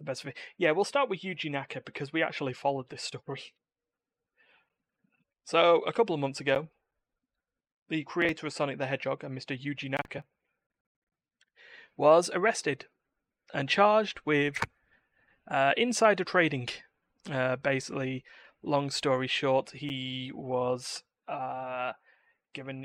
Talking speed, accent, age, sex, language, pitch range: 125 wpm, British, 30-49, male, English, 130-150 Hz